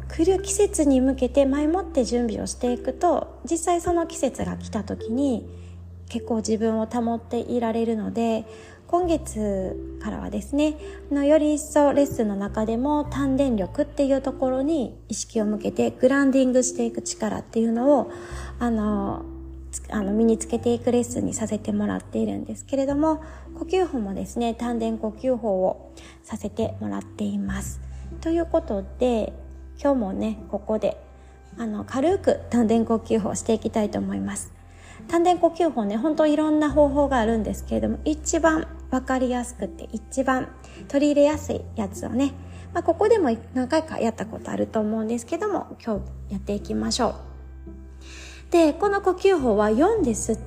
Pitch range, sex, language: 195-290 Hz, female, Japanese